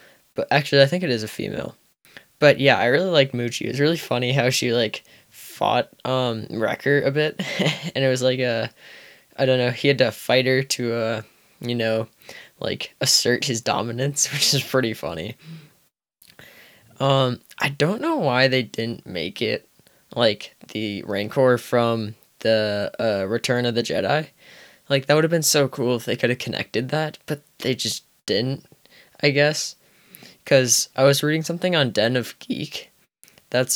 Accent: American